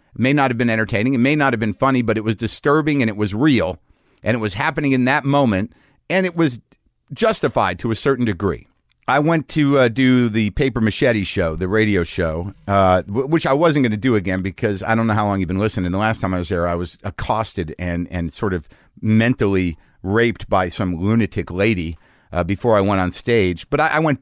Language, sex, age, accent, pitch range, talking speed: English, male, 50-69, American, 95-125 Hz, 230 wpm